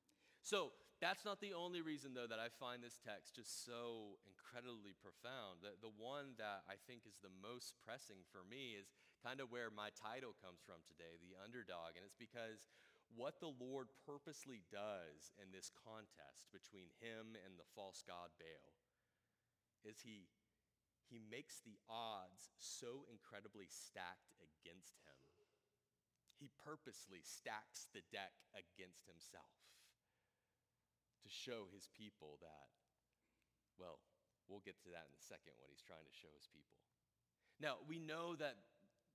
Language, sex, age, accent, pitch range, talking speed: English, male, 30-49, American, 100-130 Hz, 150 wpm